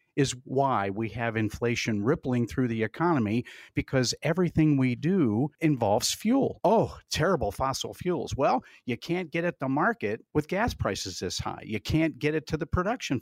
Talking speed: 175 wpm